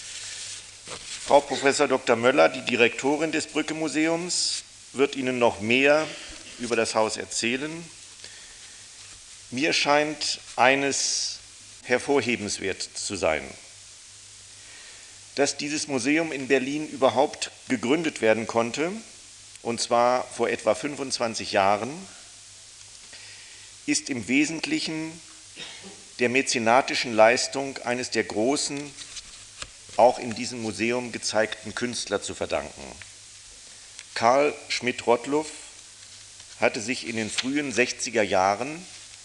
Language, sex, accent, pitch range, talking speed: Spanish, male, German, 110-135 Hz, 95 wpm